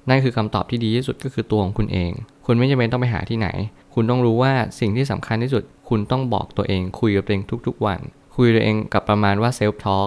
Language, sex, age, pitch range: Thai, male, 20-39, 95-120 Hz